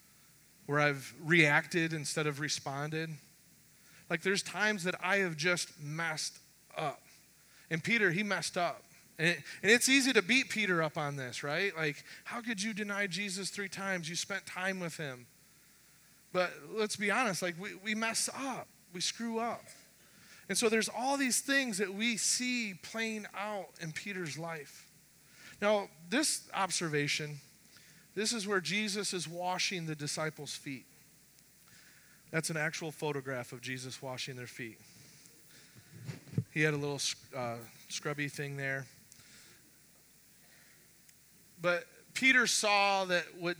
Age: 20-39